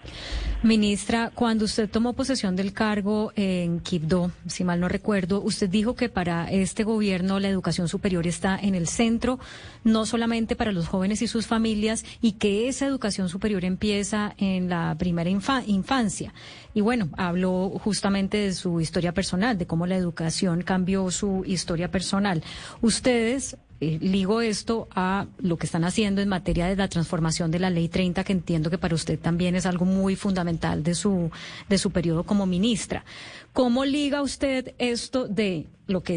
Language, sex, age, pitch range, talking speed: Spanish, female, 30-49, 185-225 Hz, 165 wpm